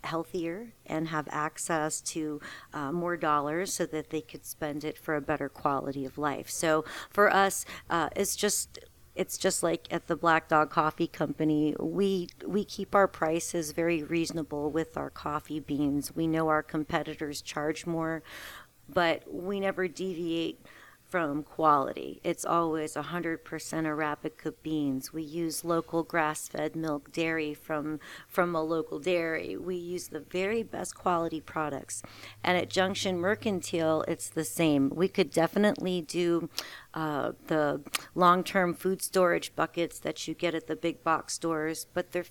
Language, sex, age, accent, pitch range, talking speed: English, female, 40-59, American, 155-180 Hz, 155 wpm